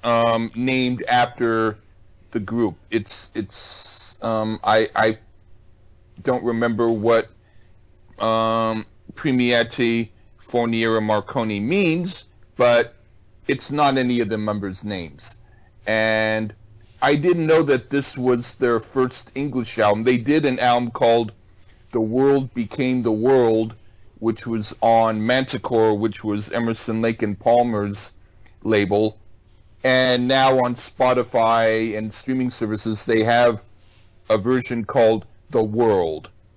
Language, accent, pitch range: English, American, 105-125 Hz